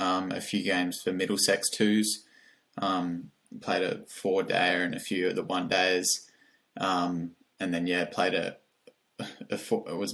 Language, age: English, 20-39